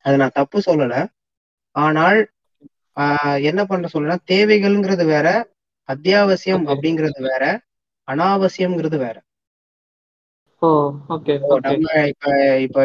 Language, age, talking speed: Tamil, 20-39, 80 wpm